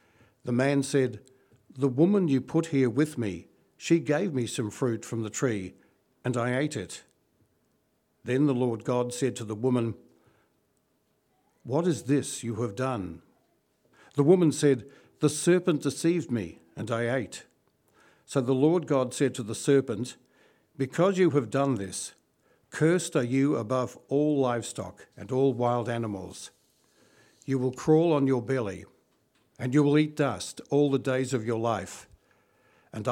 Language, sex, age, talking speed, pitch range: English, male, 60-79, 160 wpm, 115-140 Hz